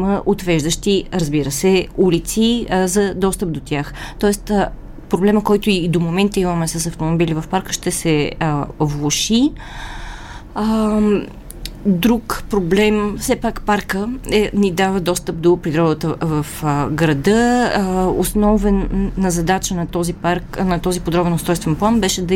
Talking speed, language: 135 wpm, Bulgarian